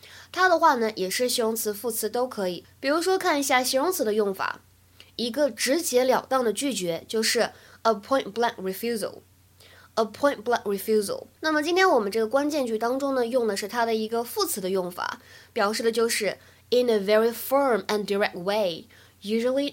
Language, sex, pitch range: Chinese, female, 200-270 Hz